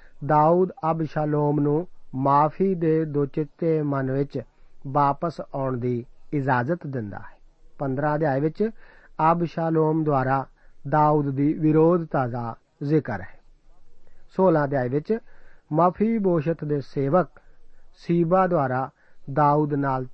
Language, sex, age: Punjabi, male, 40-59